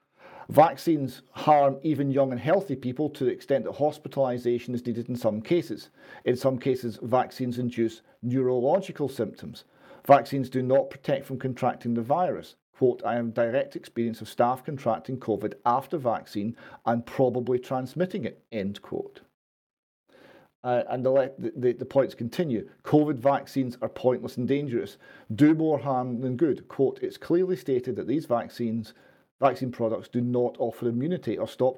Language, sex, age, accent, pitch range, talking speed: English, male, 40-59, British, 120-140 Hz, 155 wpm